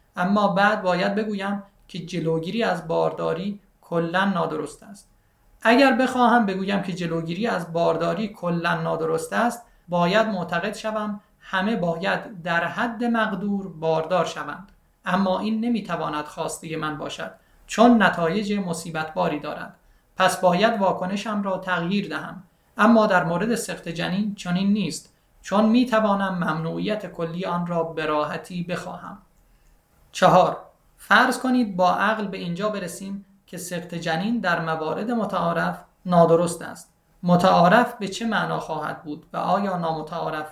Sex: male